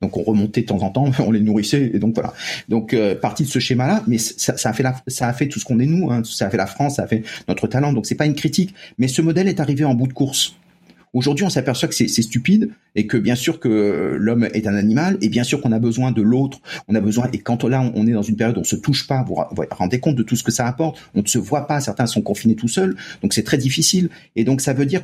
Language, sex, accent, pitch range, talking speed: French, male, French, 115-155 Hz, 305 wpm